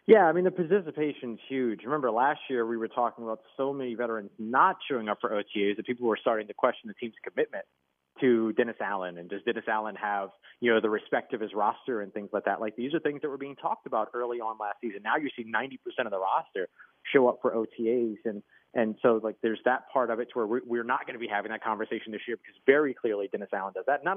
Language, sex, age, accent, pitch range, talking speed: English, male, 30-49, American, 115-150 Hz, 255 wpm